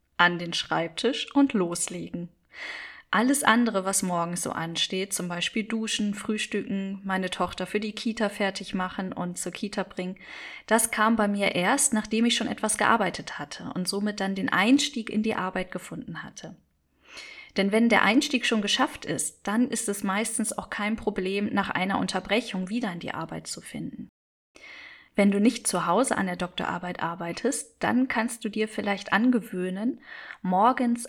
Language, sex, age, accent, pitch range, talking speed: German, female, 10-29, German, 185-230 Hz, 165 wpm